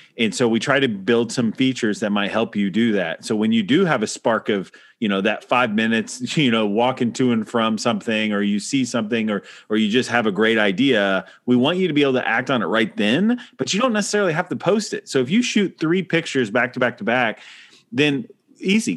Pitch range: 110-165 Hz